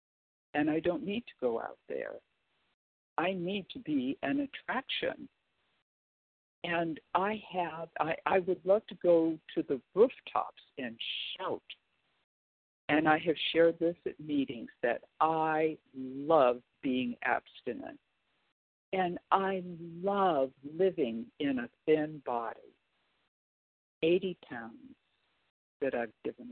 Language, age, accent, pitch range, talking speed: English, 60-79, American, 145-205 Hz, 120 wpm